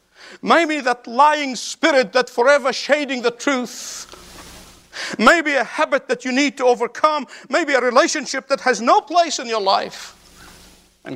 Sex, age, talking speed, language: male, 50-69, 150 wpm, English